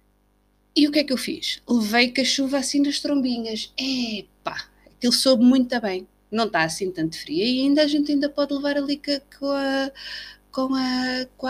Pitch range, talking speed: 190-265 Hz, 195 wpm